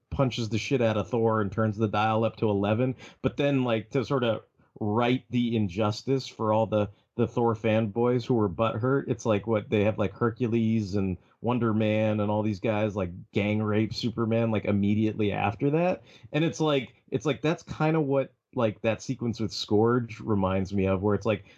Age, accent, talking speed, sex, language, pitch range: 30-49, American, 205 wpm, male, English, 105-135 Hz